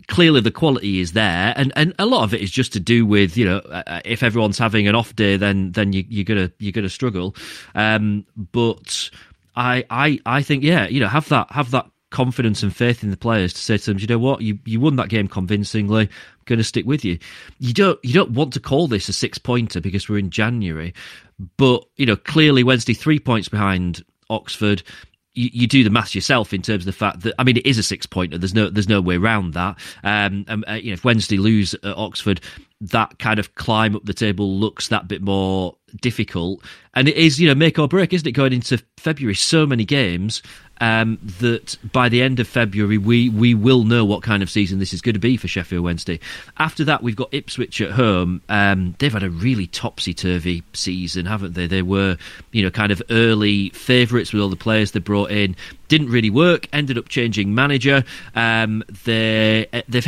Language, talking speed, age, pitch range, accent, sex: English, 220 wpm, 30-49, 100-125 Hz, British, male